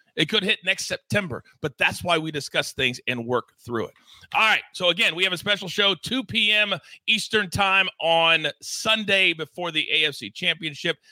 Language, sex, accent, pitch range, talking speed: English, male, American, 145-190 Hz, 185 wpm